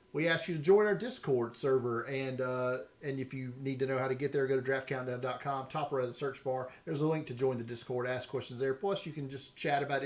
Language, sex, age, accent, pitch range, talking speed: English, male, 40-59, American, 130-165 Hz, 270 wpm